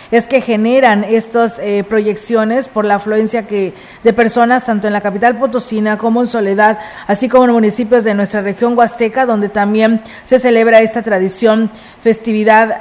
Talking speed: 165 wpm